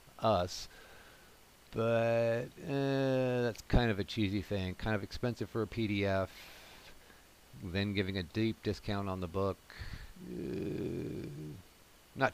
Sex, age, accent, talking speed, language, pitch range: male, 50-69, American, 120 wpm, English, 95-115 Hz